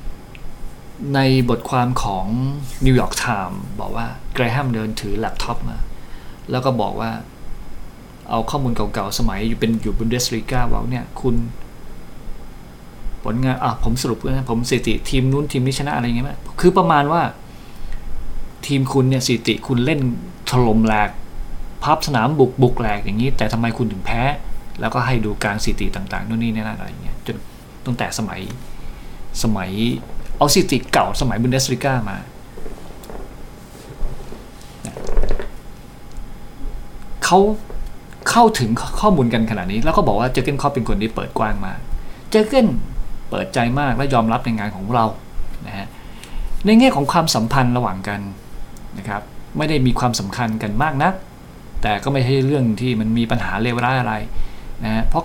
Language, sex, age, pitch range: Thai, male, 20-39, 110-135 Hz